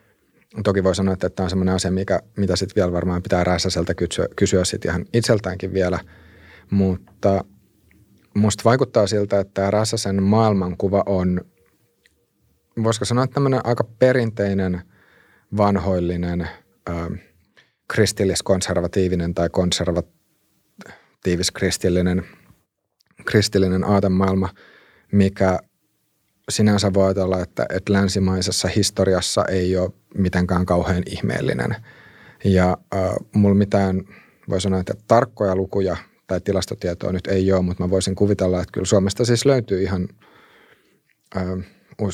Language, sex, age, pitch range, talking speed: Finnish, male, 30-49, 90-100 Hz, 115 wpm